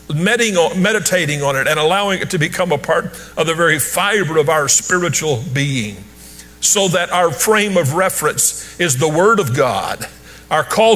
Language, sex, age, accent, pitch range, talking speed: English, male, 50-69, American, 125-185 Hz, 170 wpm